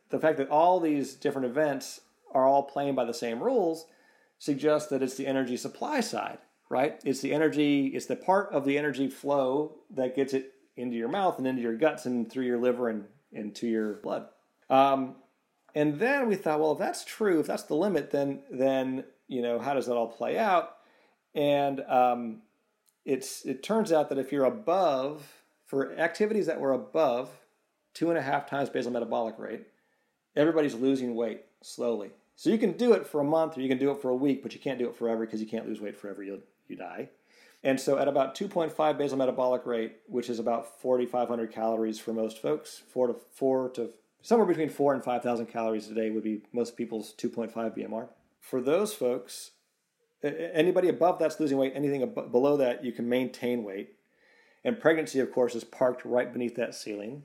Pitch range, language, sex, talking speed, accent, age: 120-150 Hz, English, male, 200 wpm, American, 40-59